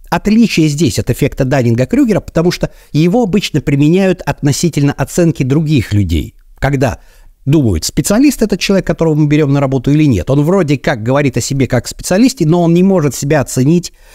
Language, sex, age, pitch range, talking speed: Russian, male, 50-69, 120-175 Hz, 170 wpm